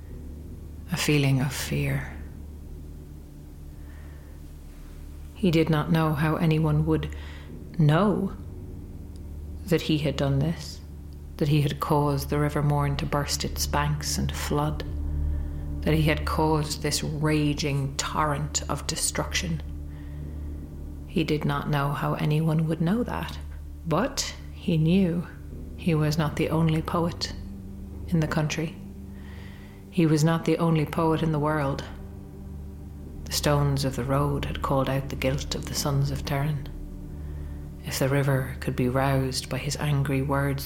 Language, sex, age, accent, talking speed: English, female, 40-59, Irish, 140 wpm